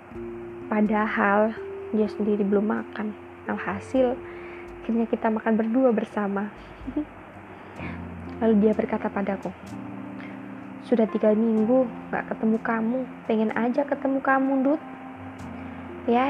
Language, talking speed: Indonesian, 105 wpm